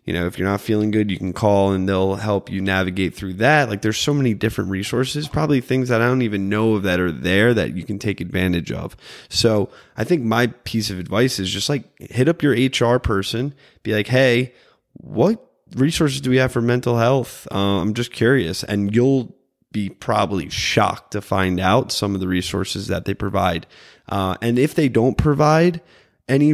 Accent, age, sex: American, 20-39, male